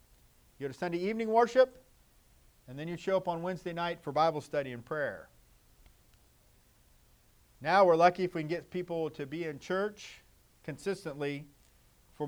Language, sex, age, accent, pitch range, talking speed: English, male, 50-69, American, 135-185 Hz, 160 wpm